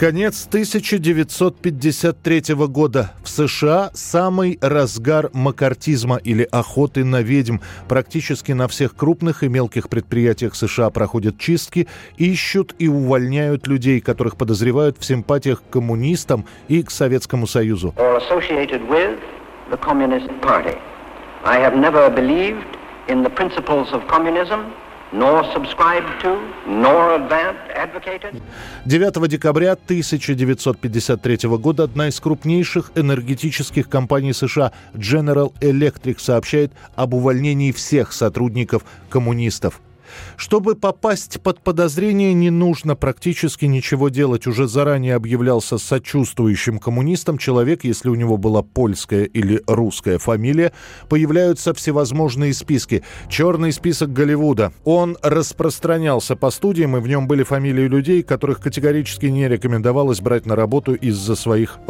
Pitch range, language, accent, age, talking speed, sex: 125-160 Hz, Russian, native, 60-79, 100 wpm, male